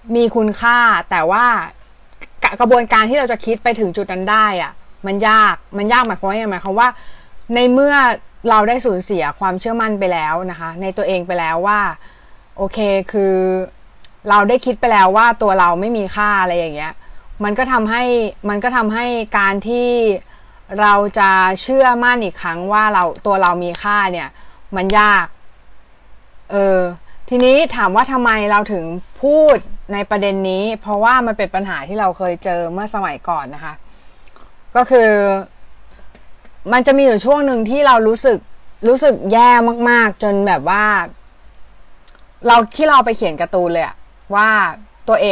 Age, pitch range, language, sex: 20-39, 185-235 Hz, Thai, female